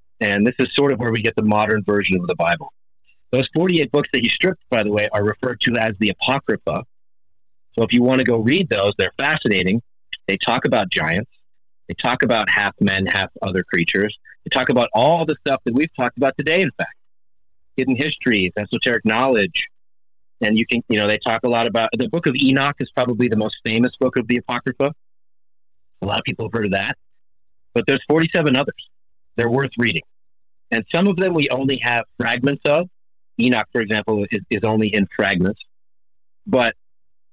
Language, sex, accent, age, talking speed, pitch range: English, male, American, 30-49, 200 wpm, 100-140 Hz